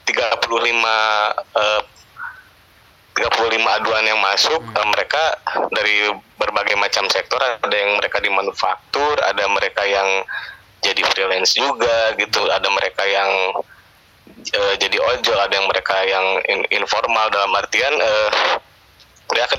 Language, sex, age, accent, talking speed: Indonesian, male, 20-39, native, 125 wpm